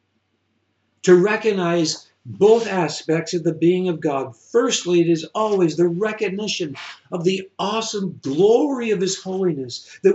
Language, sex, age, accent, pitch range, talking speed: English, male, 60-79, American, 110-170 Hz, 135 wpm